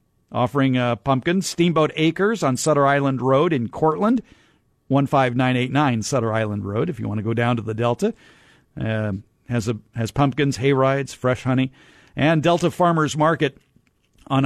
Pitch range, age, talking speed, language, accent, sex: 120-160 Hz, 50-69, 160 wpm, English, American, male